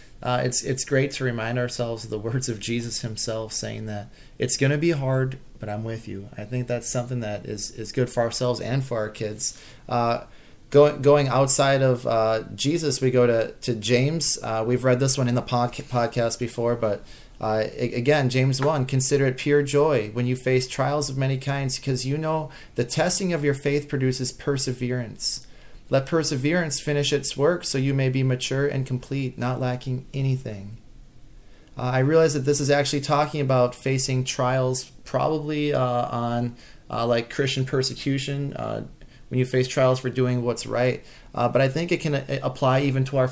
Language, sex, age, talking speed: English, male, 30-49, 190 wpm